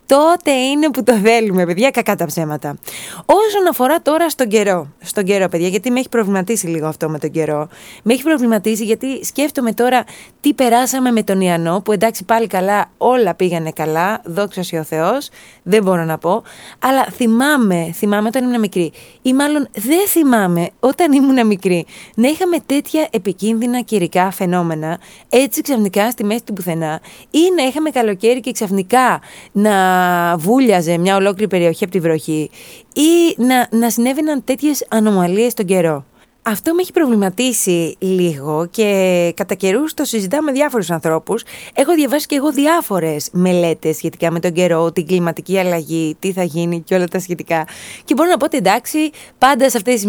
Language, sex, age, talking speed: Greek, female, 20-39, 170 wpm